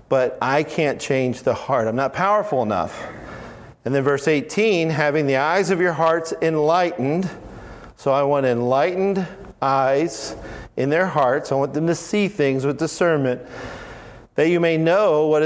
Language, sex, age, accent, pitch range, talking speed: English, male, 50-69, American, 130-165 Hz, 165 wpm